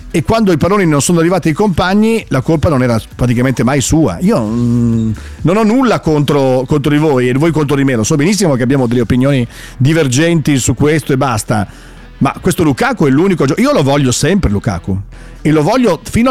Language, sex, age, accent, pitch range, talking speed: Italian, male, 40-59, native, 120-170 Hz, 200 wpm